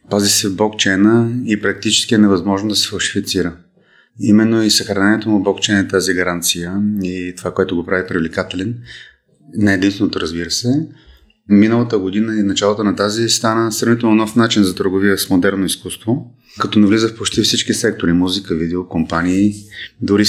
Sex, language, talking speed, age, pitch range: male, Bulgarian, 165 wpm, 30-49, 95-110 Hz